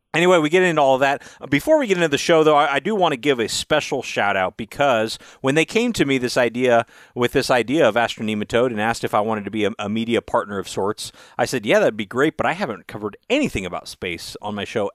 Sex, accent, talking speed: male, American, 260 wpm